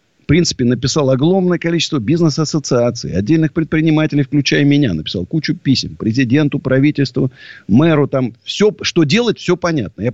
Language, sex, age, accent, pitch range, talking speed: Russian, male, 50-69, native, 125-165 Hz, 135 wpm